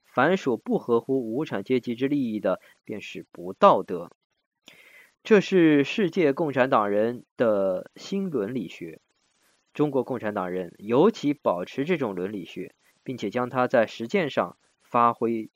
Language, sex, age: Chinese, male, 20-39